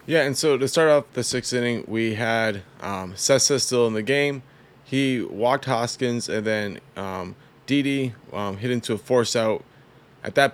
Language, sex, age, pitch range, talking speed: English, male, 20-39, 105-135 Hz, 180 wpm